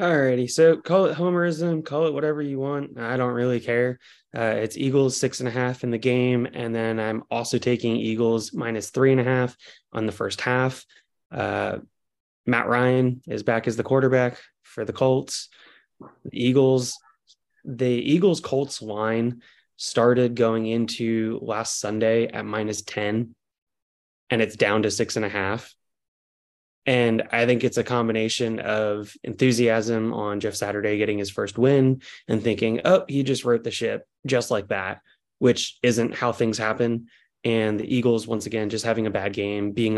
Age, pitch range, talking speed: 20-39, 105-125 Hz, 170 wpm